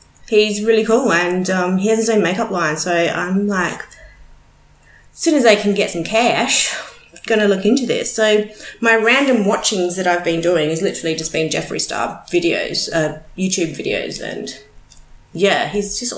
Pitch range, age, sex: 175-240 Hz, 30-49, female